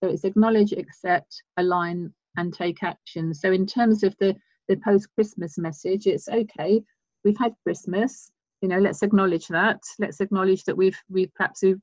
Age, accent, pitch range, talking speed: 50-69, British, 175-200 Hz, 165 wpm